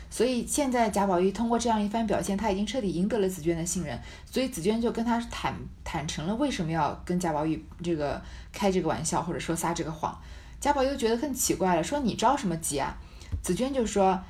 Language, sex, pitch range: Chinese, female, 170-250 Hz